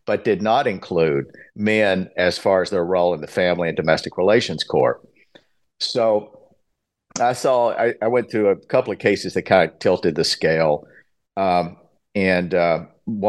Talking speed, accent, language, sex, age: 165 wpm, American, English, male, 50-69